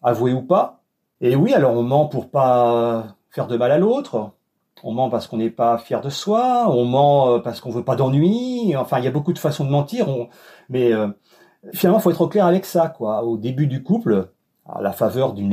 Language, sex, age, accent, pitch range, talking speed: French, male, 40-59, French, 120-180 Hz, 225 wpm